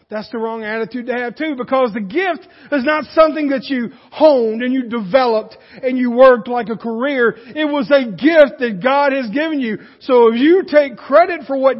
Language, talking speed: English, 210 wpm